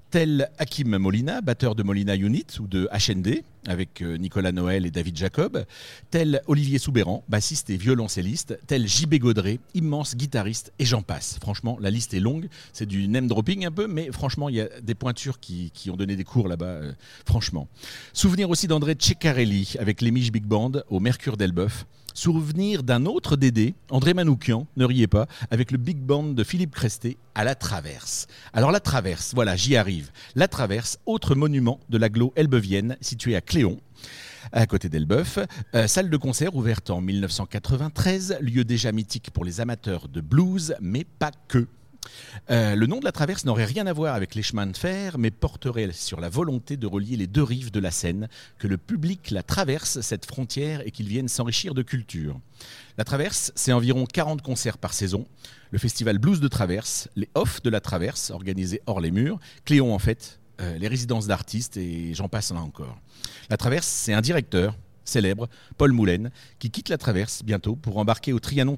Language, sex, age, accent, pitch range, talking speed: French, male, 40-59, French, 105-135 Hz, 190 wpm